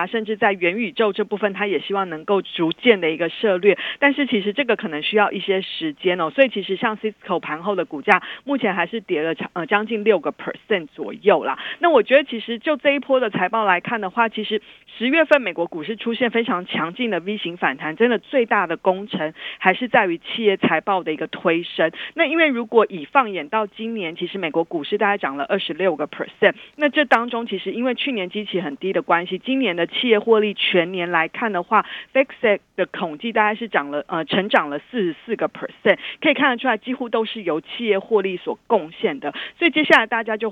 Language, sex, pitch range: Chinese, female, 185-240 Hz